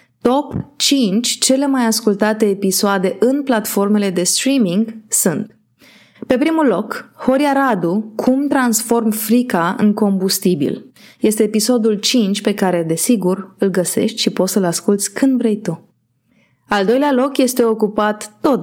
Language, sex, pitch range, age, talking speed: Romanian, female, 190-245 Hz, 20-39, 135 wpm